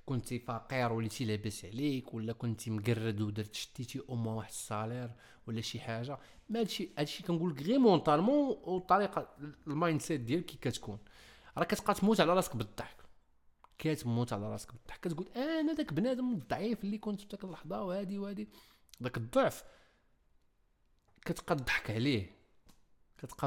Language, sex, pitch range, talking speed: Arabic, male, 115-190 Hz, 145 wpm